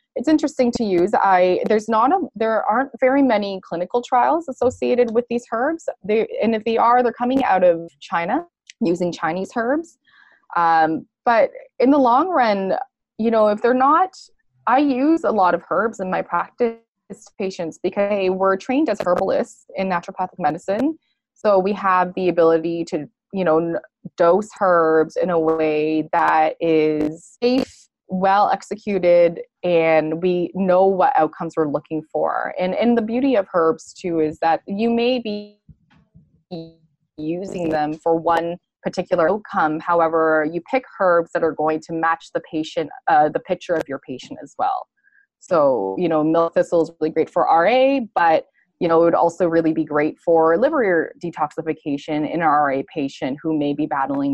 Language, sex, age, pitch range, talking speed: English, female, 20-39, 165-230 Hz, 170 wpm